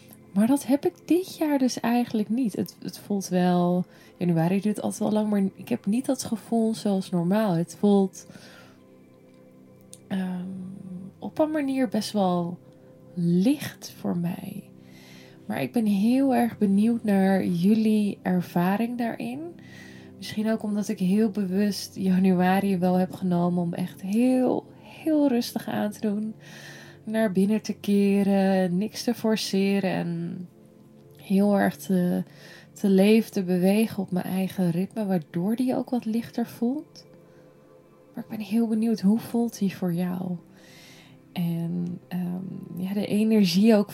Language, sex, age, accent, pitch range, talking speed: Dutch, female, 20-39, Dutch, 180-215 Hz, 145 wpm